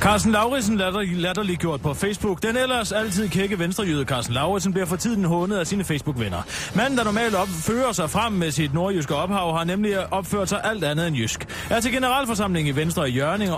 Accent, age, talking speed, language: native, 30-49, 200 wpm, Danish